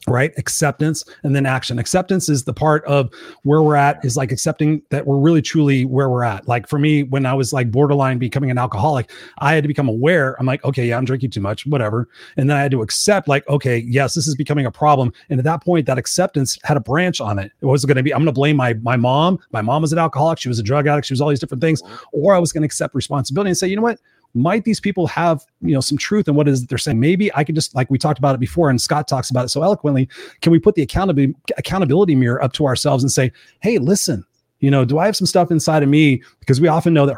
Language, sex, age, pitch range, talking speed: English, male, 30-49, 130-160 Hz, 280 wpm